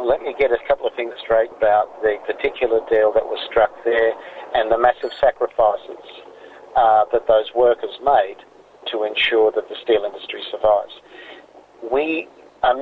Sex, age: male, 50-69